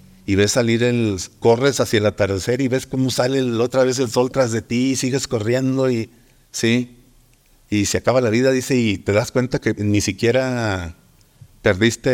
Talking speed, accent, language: 195 wpm, Mexican, Spanish